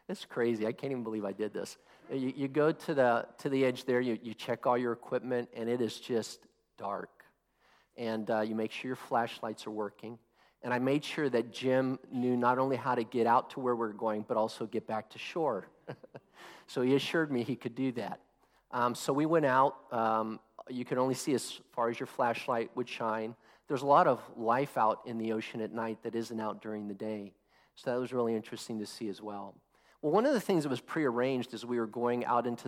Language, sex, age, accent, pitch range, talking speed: English, male, 50-69, American, 110-130 Hz, 235 wpm